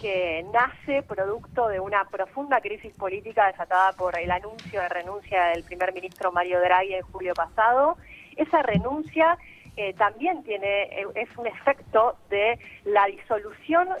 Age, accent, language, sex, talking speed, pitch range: 30-49, Argentinian, Spanish, female, 140 wpm, 200-260 Hz